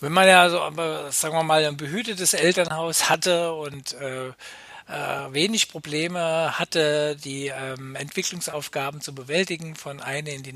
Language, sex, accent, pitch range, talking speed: German, male, German, 135-175 Hz, 150 wpm